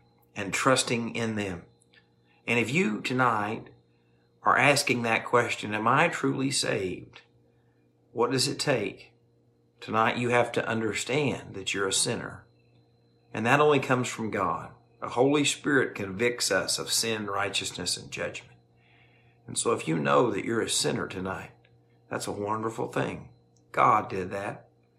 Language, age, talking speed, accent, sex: English, 50-69, 150 wpm, American, male